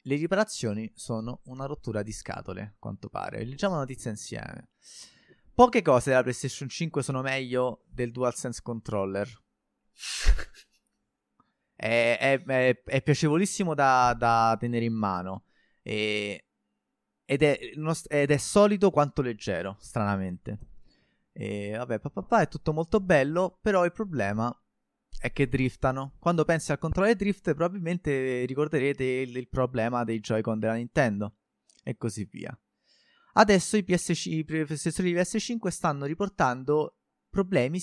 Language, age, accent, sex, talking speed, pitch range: Italian, 20-39, native, male, 130 wpm, 115-165 Hz